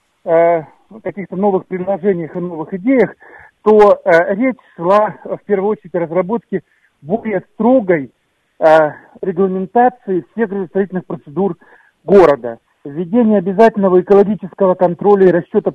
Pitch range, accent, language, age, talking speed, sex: 175-205 Hz, native, Russian, 50-69, 105 wpm, male